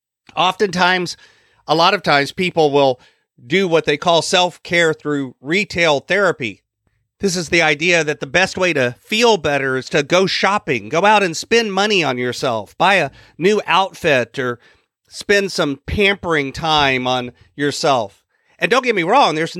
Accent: American